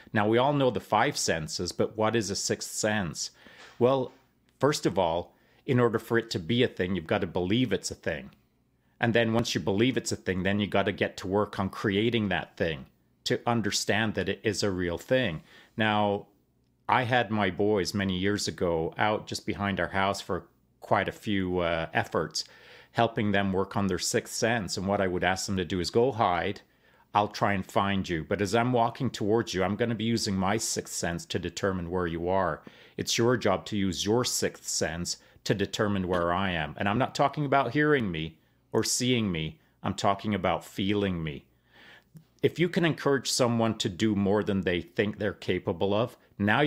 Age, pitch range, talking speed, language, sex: 40-59, 95-115 Hz, 210 wpm, English, male